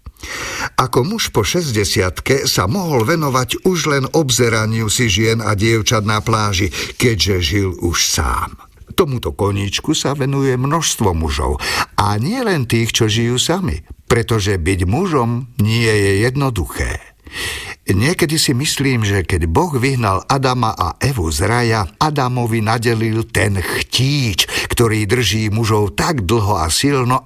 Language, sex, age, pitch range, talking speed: Slovak, male, 50-69, 100-130 Hz, 135 wpm